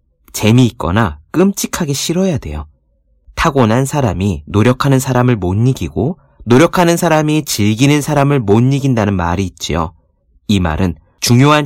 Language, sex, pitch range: Korean, male, 90-140 Hz